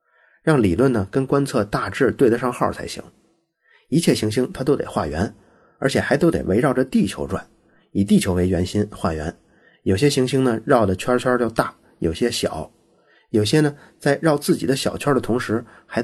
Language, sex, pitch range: Chinese, male, 95-130 Hz